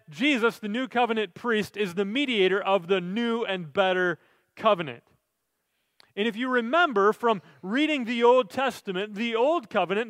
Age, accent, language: 30-49, American, English